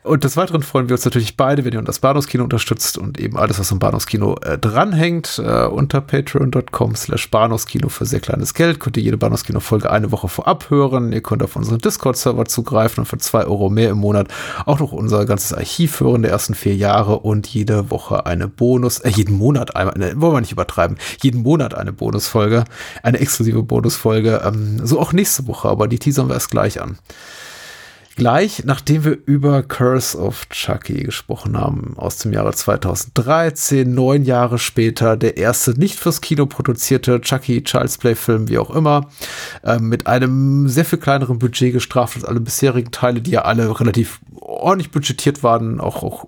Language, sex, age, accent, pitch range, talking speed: German, male, 30-49, German, 110-135 Hz, 190 wpm